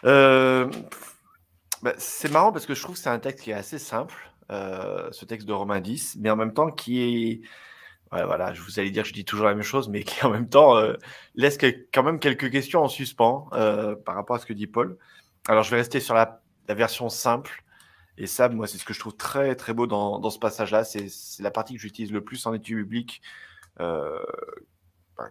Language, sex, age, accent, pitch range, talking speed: French, male, 20-39, French, 100-125 Hz, 235 wpm